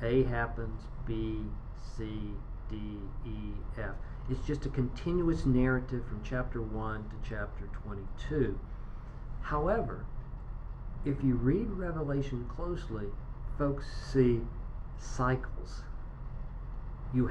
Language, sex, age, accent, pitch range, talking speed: English, male, 50-69, American, 110-140 Hz, 95 wpm